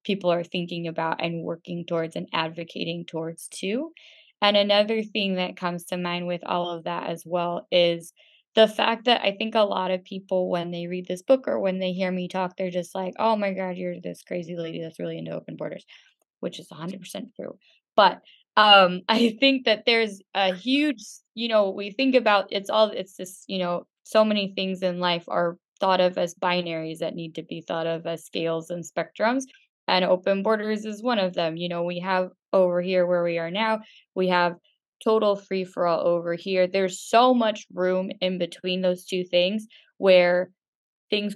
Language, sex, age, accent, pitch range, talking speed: English, female, 20-39, American, 170-200 Hz, 200 wpm